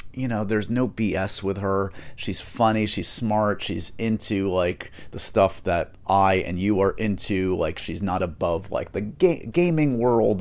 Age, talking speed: 30-49, 175 wpm